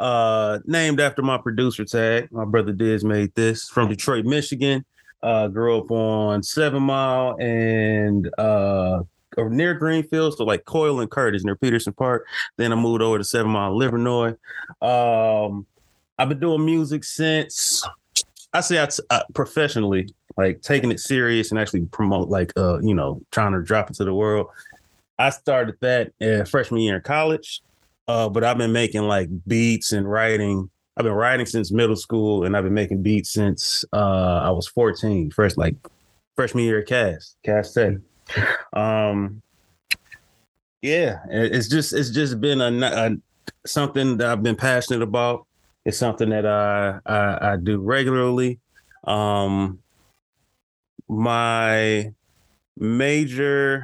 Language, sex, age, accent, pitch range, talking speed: English, male, 30-49, American, 105-125 Hz, 150 wpm